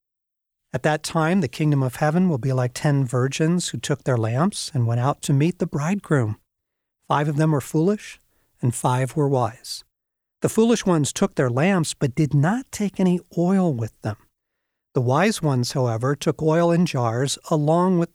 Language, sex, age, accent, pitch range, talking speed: English, male, 50-69, American, 135-185 Hz, 185 wpm